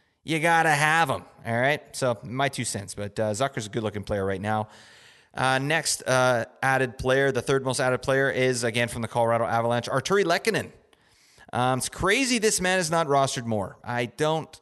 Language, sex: English, male